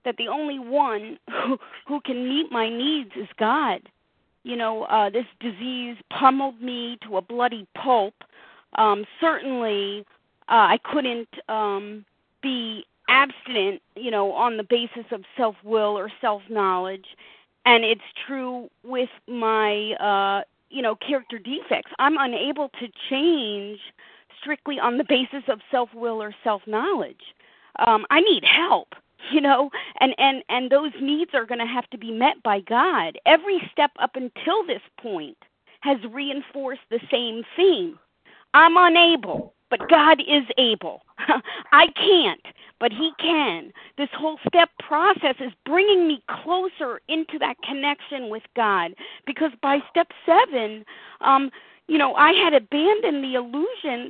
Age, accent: 40-59, American